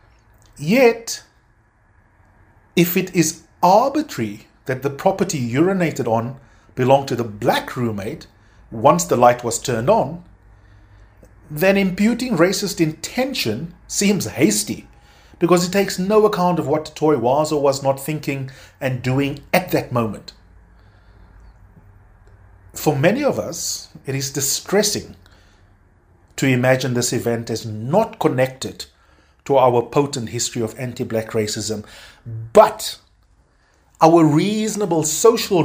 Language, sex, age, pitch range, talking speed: English, male, 30-49, 100-155 Hz, 120 wpm